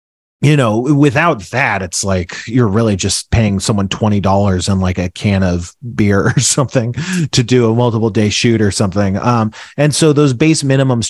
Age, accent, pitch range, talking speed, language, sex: 30-49, American, 115-160 Hz, 185 wpm, English, male